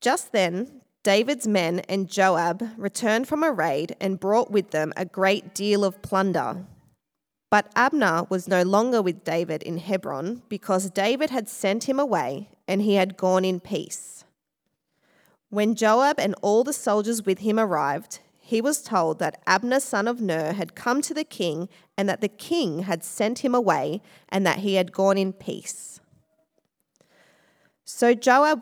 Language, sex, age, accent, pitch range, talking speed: English, female, 20-39, Australian, 185-240 Hz, 165 wpm